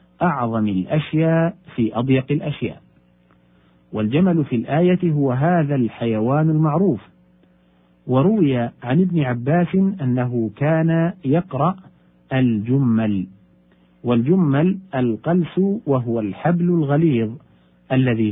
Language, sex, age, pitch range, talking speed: Arabic, male, 50-69, 105-160 Hz, 85 wpm